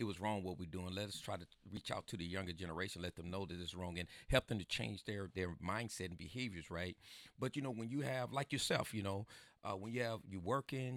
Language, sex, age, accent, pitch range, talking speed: English, male, 40-59, American, 90-115 Hz, 270 wpm